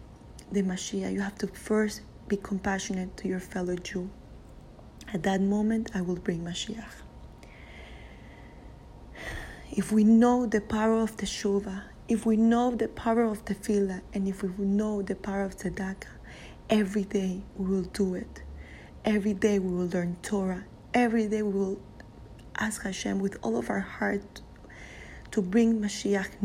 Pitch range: 185-210 Hz